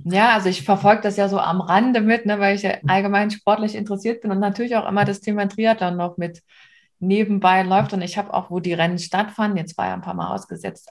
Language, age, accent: German, 20-39, German